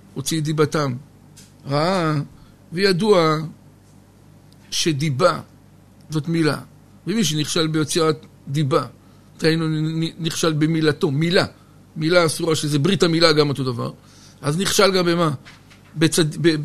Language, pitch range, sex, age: Hebrew, 145-180 Hz, male, 60-79